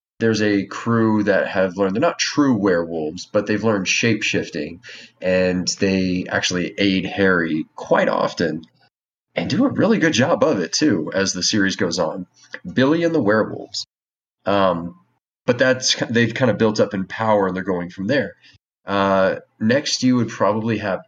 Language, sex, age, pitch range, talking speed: English, male, 30-49, 95-115 Hz, 175 wpm